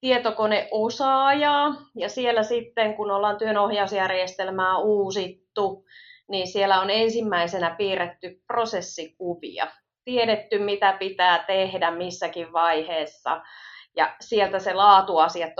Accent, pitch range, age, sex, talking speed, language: native, 170-220 Hz, 30-49, female, 90 wpm, Finnish